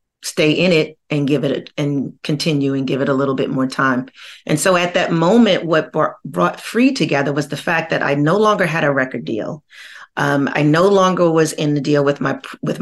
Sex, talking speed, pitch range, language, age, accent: female, 220 wpm, 140-160 Hz, English, 40-59, American